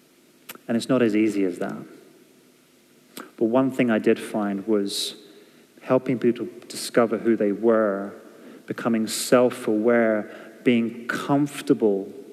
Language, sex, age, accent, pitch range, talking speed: English, male, 30-49, British, 100-115 Hz, 115 wpm